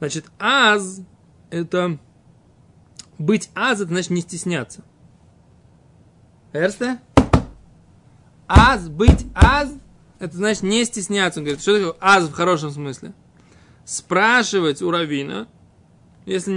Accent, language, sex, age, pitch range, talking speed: native, Russian, male, 20-39, 160-215 Hz, 100 wpm